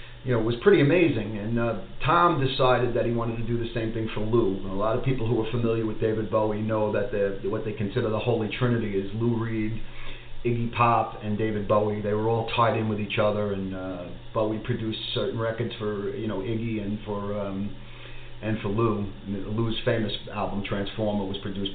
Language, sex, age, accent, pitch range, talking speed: English, male, 40-59, American, 105-125 Hz, 220 wpm